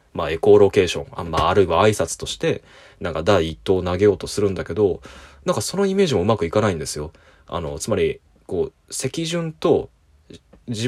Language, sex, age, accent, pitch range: Japanese, male, 20-39, native, 95-145 Hz